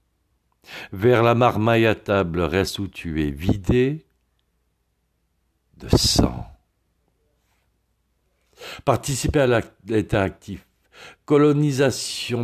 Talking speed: 70 wpm